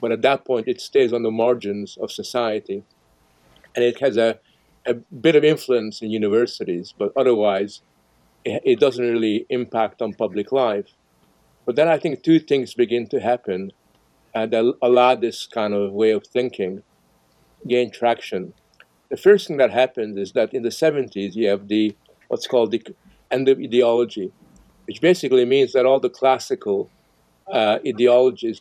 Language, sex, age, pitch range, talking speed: English, male, 50-69, 110-165 Hz, 165 wpm